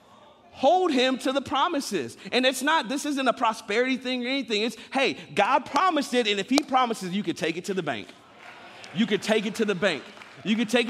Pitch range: 160-225 Hz